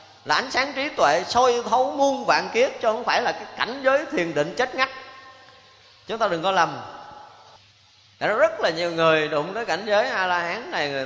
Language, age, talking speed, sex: Vietnamese, 30-49, 215 wpm, male